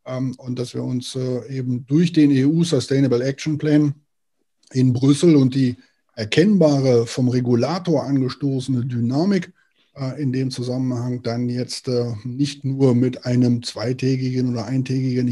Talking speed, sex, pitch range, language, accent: 125 wpm, male, 125-150 Hz, German, German